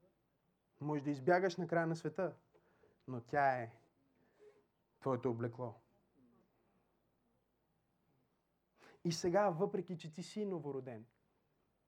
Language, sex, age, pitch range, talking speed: Bulgarian, male, 30-49, 155-210 Hz, 95 wpm